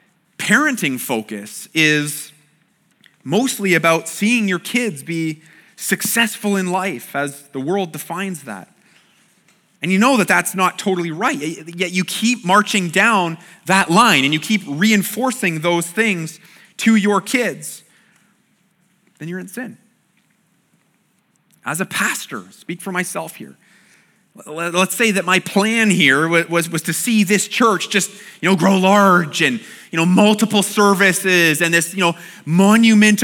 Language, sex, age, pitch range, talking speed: English, male, 30-49, 180-220 Hz, 145 wpm